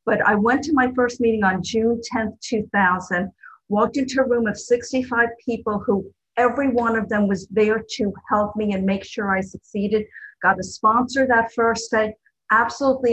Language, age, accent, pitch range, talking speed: English, 50-69, American, 200-240 Hz, 185 wpm